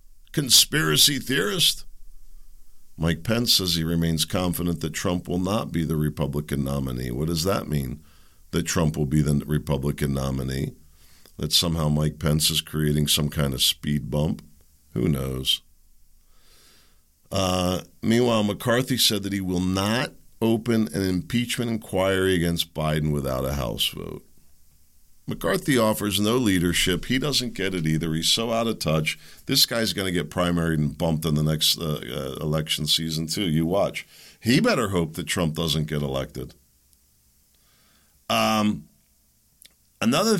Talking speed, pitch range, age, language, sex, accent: 150 wpm, 75-100 Hz, 50-69, English, male, American